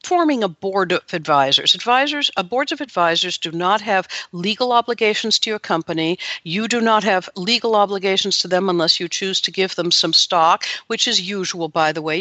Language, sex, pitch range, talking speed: English, female, 165-200 Hz, 195 wpm